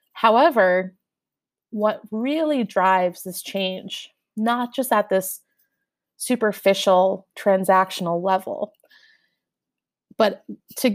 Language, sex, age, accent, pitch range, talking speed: English, female, 20-39, American, 190-230 Hz, 80 wpm